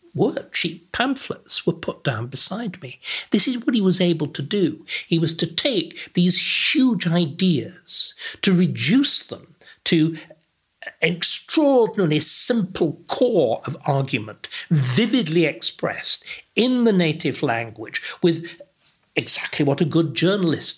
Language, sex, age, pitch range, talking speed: English, male, 60-79, 140-185 Hz, 125 wpm